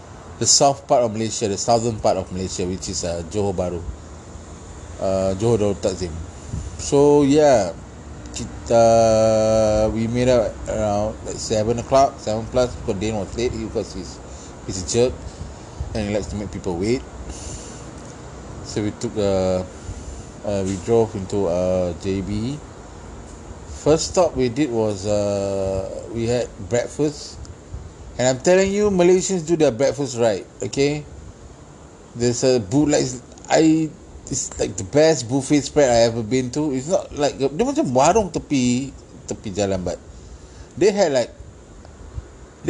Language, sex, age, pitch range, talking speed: Malay, male, 30-49, 95-130 Hz, 140 wpm